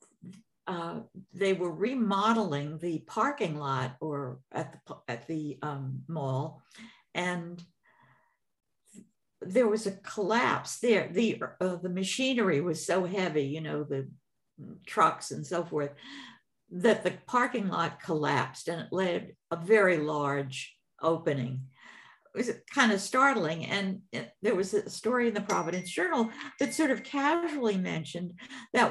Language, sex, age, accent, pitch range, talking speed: English, female, 60-79, American, 160-220 Hz, 140 wpm